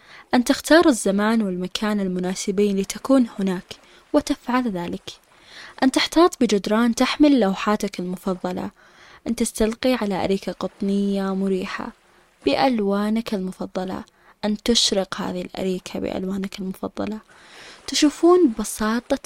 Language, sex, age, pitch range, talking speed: Arabic, female, 10-29, 190-240 Hz, 95 wpm